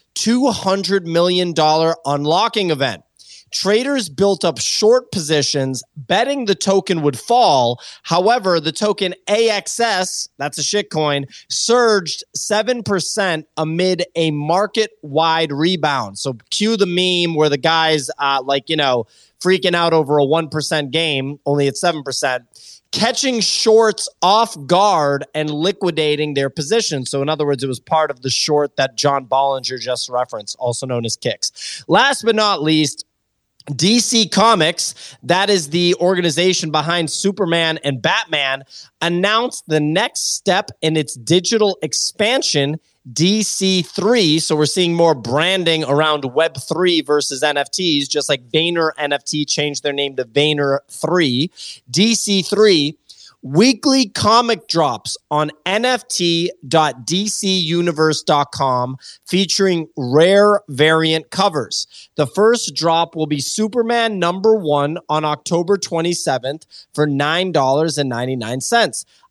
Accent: American